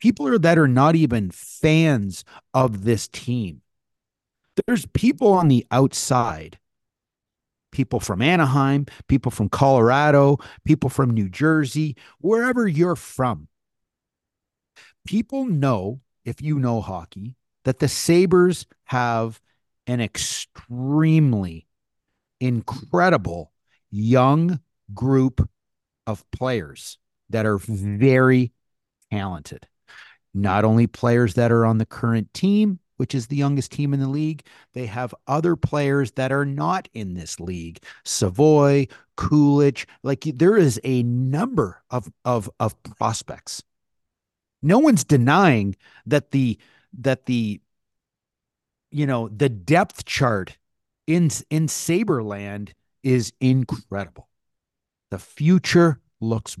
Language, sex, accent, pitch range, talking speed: English, male, American, 110-150 Hz, 110 wpm